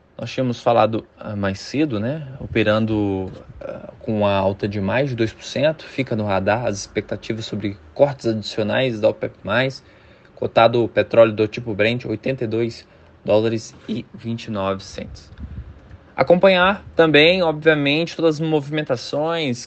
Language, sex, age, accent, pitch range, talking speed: Portuguese, male, 20-39, Brazilian, 100-130 Hz, 125 wpm